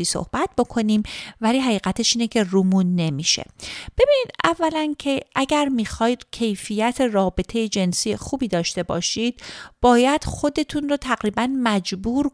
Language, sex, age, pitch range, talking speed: Persian, female, 30-49, 200-265 Hz, 115 wpm